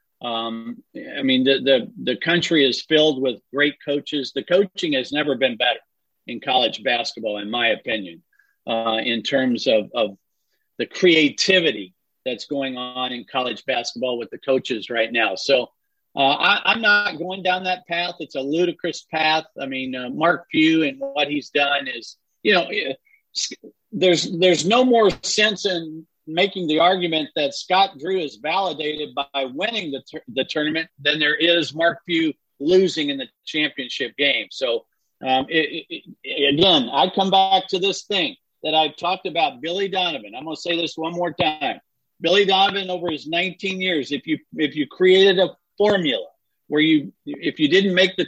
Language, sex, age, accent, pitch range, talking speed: English, male, 50-69, American, 145-185 Hz, 180 wpm